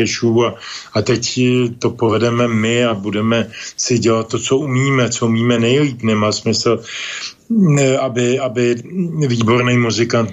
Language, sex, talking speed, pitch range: Slovak, male, 130 wpm, 110-125 Hz